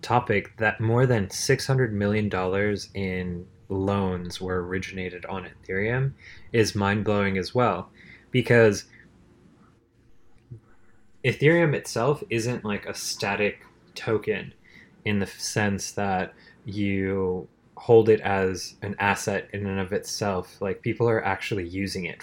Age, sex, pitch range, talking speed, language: 20-39, male, 95-120 Hz, 120 wpm, English